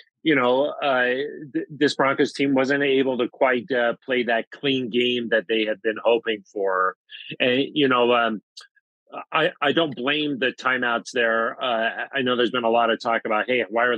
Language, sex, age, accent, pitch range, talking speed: English, male, 40-59, American, 120-140 Hz, 200 wpm